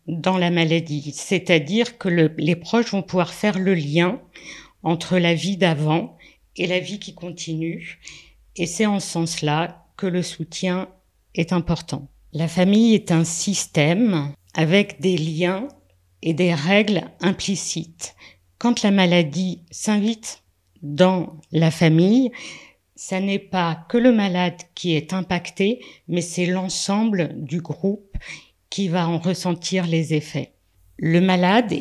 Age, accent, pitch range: 50-69, French, 160-195 Hz